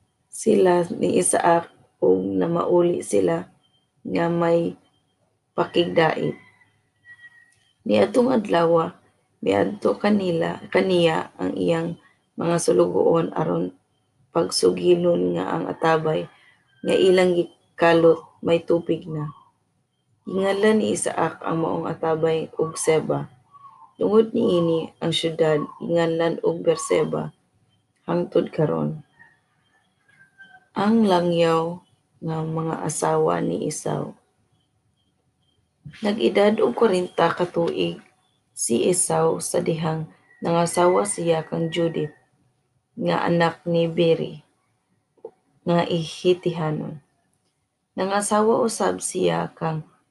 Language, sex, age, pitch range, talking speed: Filipino, female, 20-39, 155-180 Hz, 90 wpm